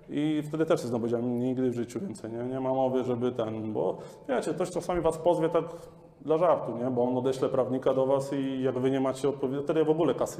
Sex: male